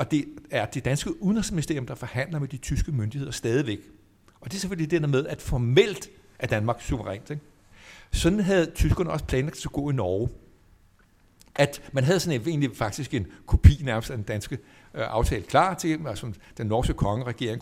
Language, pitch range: Danish, 110-160 Hz